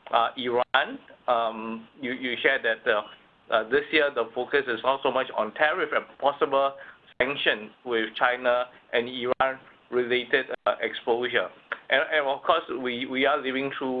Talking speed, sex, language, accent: 165 wpm, male, English, Malaysian